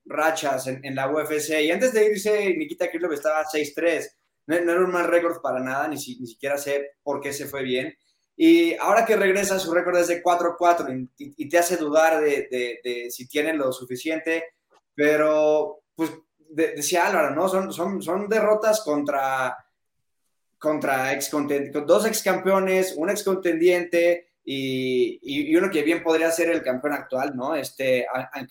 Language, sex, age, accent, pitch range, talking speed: Spanish, male, 20-39, Mexican, 150-205 Hz, 175 wpm